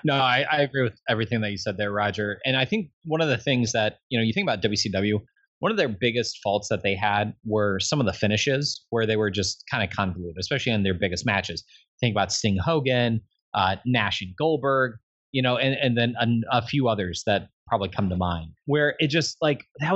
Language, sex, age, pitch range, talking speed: English, male, 30-49, 110-145 Hz, 230 wpm